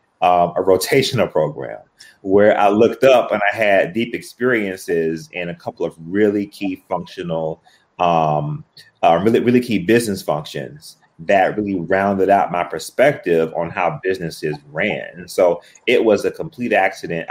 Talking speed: 155 wpm